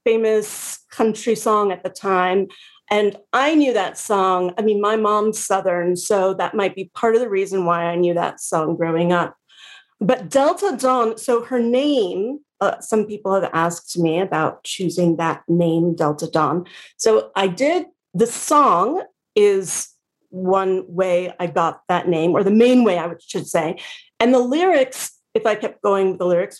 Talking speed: 175 wpm